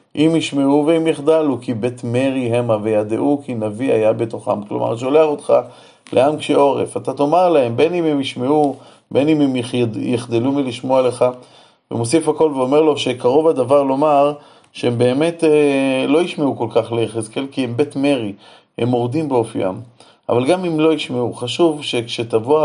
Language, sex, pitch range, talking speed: Hebrew, male, 115-145 Hz, 160 wpm